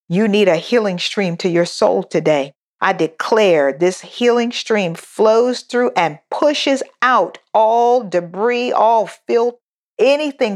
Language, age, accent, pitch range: English, 50-69, American, 175-220 Hz